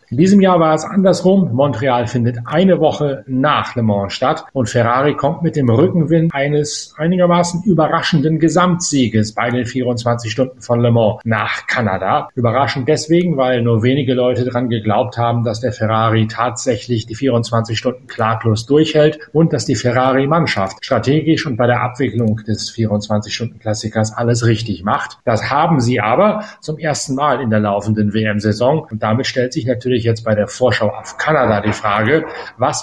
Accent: German